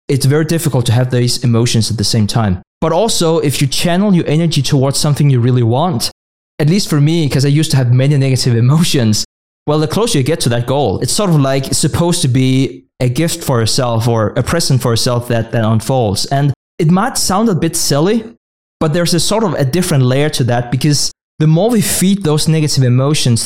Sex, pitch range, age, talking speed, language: male, 125-160 Hz, 20-39, 225 wpm, English